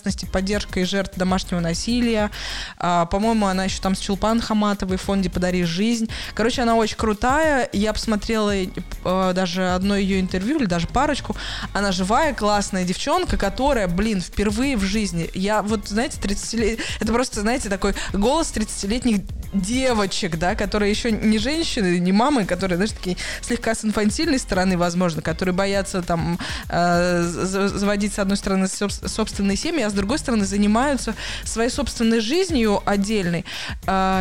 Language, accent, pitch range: Russian, native, 190-230 Hz